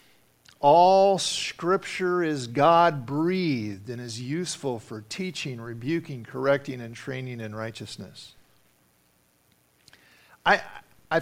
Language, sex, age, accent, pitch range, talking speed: English, male, 50-69, American, 120-180 Hz, 95 wpm